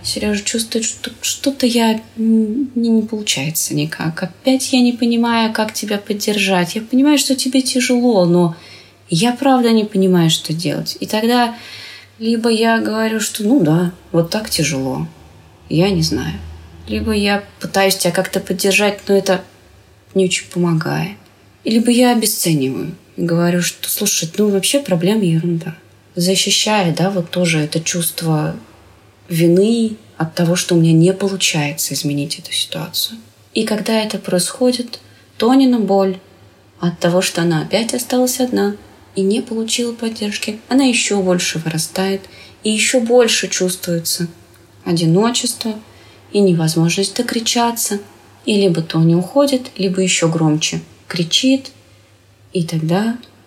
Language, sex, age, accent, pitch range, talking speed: Russian, female, 20-39, native, 160-225 Hz, 135 wpm